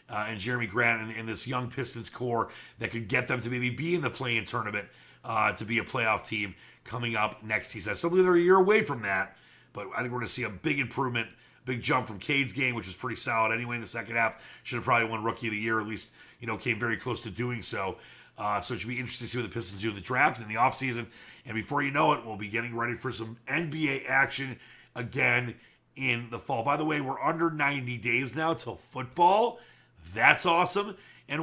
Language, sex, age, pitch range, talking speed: English, male, 30-49, 115-150 Hz, 260 wpm